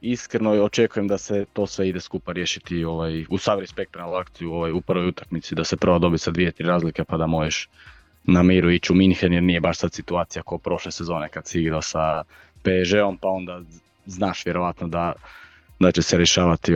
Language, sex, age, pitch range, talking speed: Croatian, male, 20-39, 85-100 Hz, 195 wpm